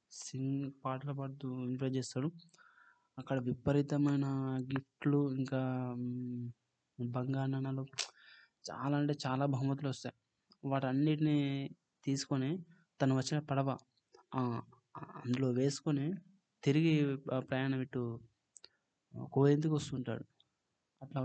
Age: 20-39